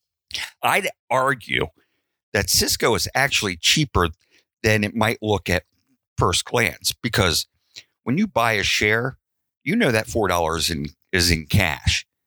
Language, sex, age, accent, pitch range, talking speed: English, male, 50-69, American, 90-120 Hz, 135 wpm